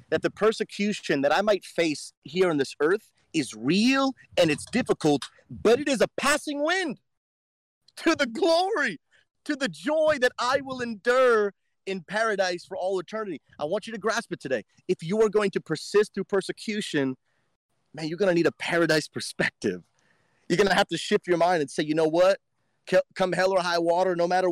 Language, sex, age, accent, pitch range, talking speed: English, male, 30-49, American, 150-195 Hz, 195 wpm